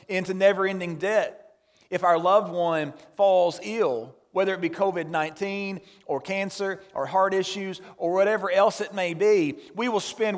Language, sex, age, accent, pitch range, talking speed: English, male, 40-59, American, 150-195 Hz, 155 wpm